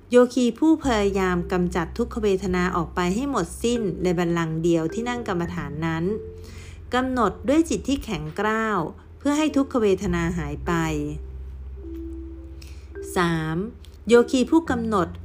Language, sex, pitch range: Thai, female, 165-230 Hz